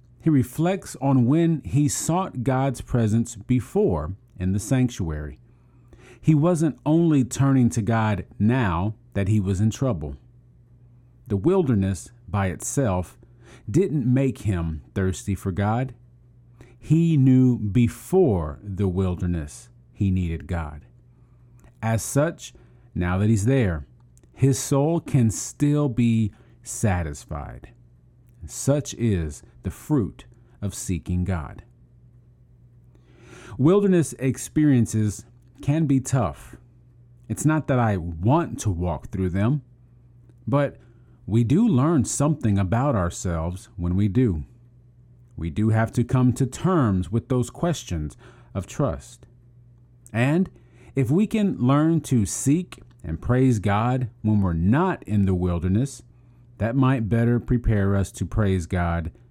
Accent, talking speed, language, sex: American, 120 wpm, English, male